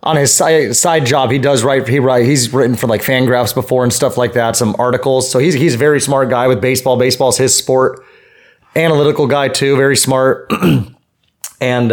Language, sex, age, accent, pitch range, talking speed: English, male, 30-49, American, 125-150 Hz, 200 wpm